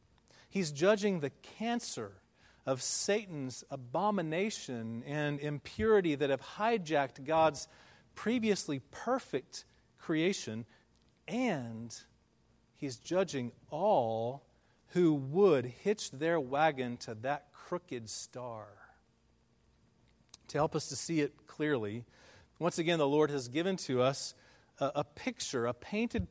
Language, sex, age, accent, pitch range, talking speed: English, male, 40-59, American, 130-195 Hz, 110 wpm